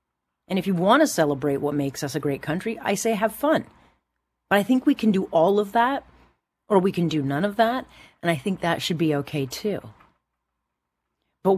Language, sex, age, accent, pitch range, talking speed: English, female, 40-59, American, 145-200 Hz, 210 wpm